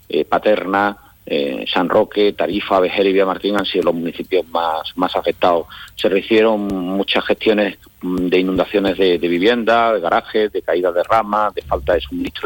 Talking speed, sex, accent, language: 175 wpm, male, Spanish, Spanish